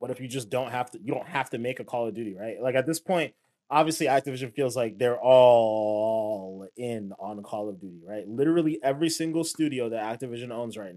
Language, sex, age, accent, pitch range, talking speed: English, male, 20-39, American, 115-155 Hz, 225 wpm